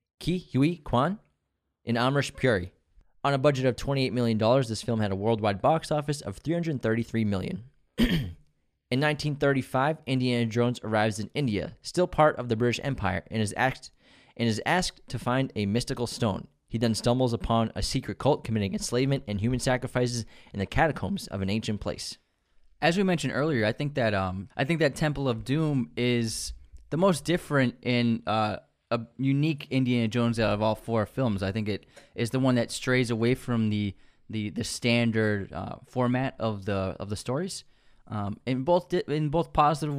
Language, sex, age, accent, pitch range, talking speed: English, male, 20-39, American, 105-140 Hz, 190 wpm